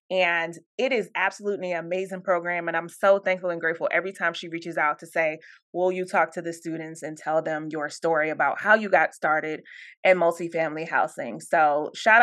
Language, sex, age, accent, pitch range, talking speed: English, female, 20-39, American, 170-245 Hz, 200 wpm